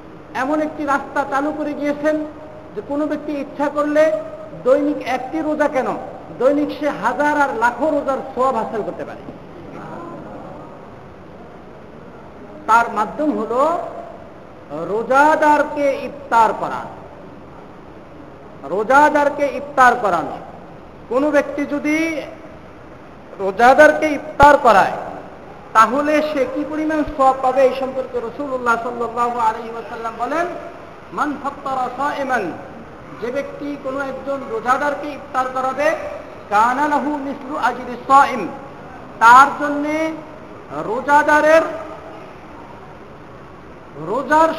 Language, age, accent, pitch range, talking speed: Bengali, 50-69, native, 255-295 Hz, 60 wpm